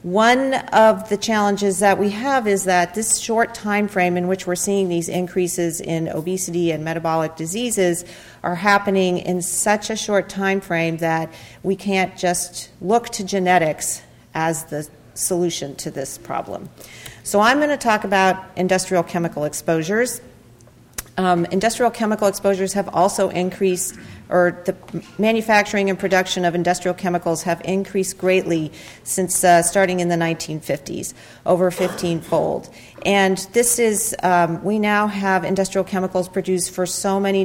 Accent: American